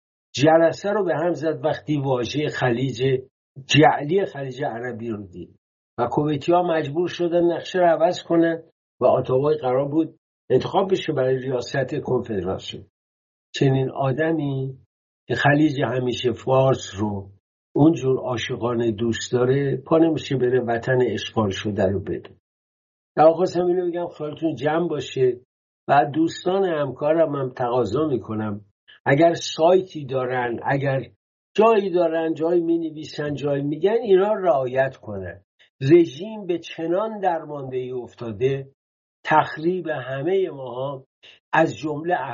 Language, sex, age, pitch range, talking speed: English, male, 60-79, 125-165 Hz, 125 wpm